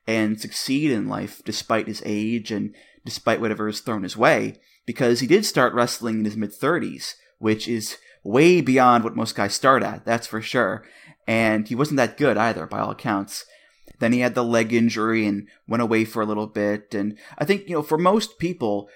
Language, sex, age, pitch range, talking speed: English, male, 30-49, 110-130 Hz, 205 wpm